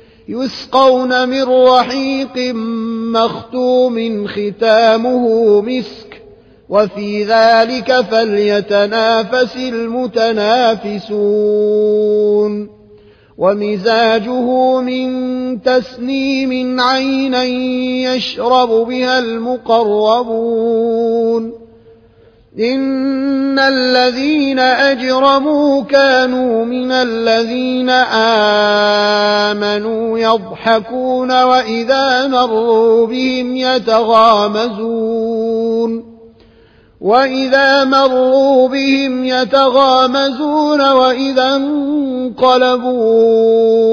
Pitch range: 225-255 Hz